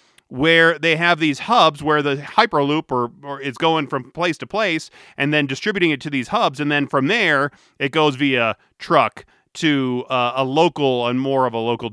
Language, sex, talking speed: English, male, 200 wpm